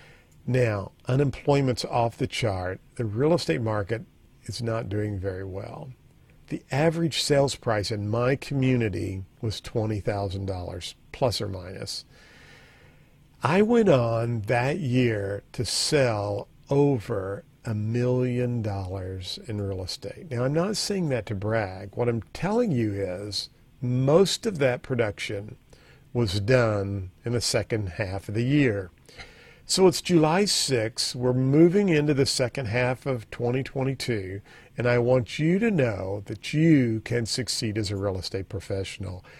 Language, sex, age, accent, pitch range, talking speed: English, male, 50-69, American, 110-140 Hz, 140 wpm